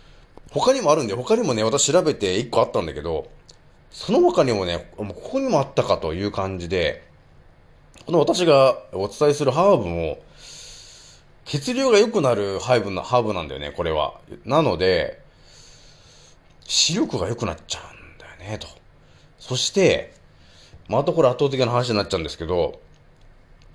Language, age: Japanese, 30-49